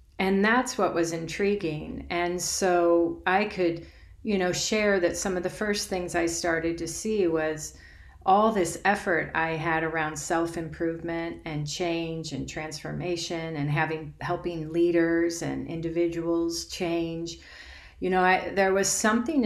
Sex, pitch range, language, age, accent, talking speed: female, 160-205 Hz, English, 40-59, American, 145 wpm